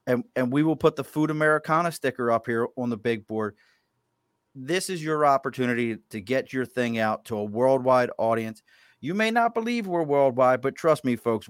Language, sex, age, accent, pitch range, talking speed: English, male, 30-49, American, 110-130 Hz, 200 wpm